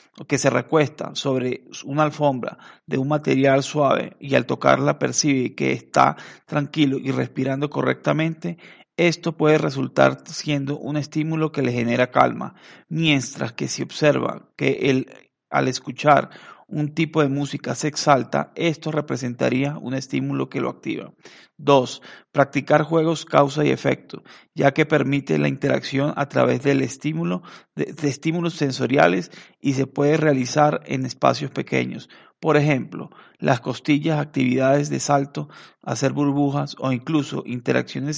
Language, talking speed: Spanish, 135 wpm